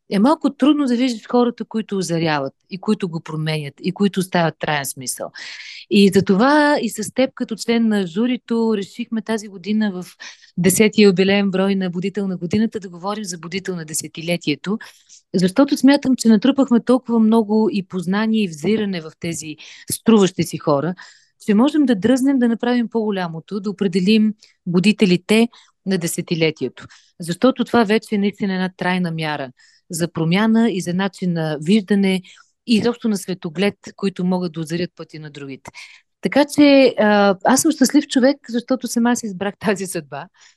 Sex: female